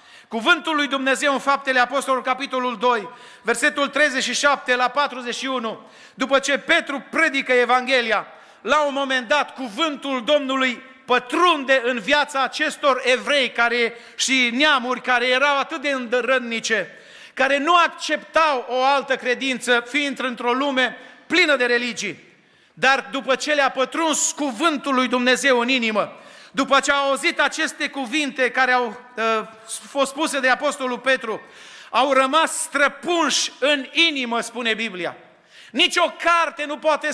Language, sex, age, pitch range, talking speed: Romanian, male, 40-59, 250-300 Hz, 130 wpm